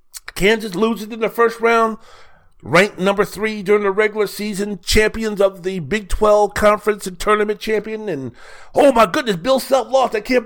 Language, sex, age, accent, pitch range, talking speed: English, male, 50-69, American, 165-220 Hz, 180 wpm